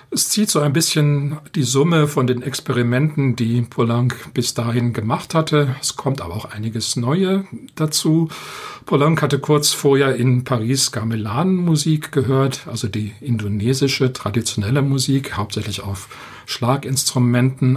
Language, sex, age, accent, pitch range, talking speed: German, male, 50-69, German, 120-150 Hz, 135 wpm